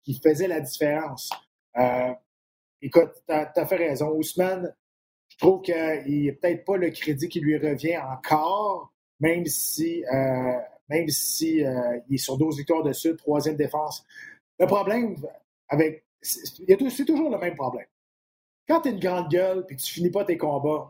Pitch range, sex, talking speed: 150-200 Hz, male, 165 wpm